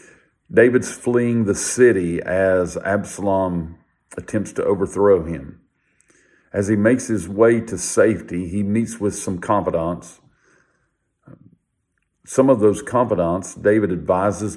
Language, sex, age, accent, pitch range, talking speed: English, male, 50-69, American, 90-110 Hz, 115 wpm